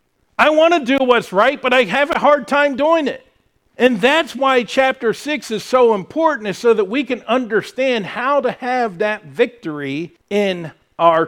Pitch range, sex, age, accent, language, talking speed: 165-230 Hz, male, 50-69, American, English, 185 wpm